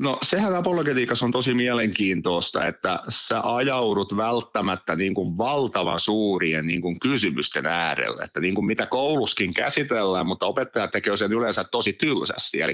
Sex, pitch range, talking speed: male, 95-115 Hz, 130 wpm